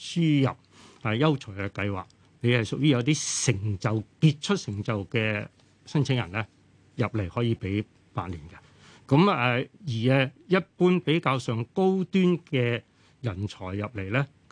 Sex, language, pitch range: male, Chinese, 115-160 Hz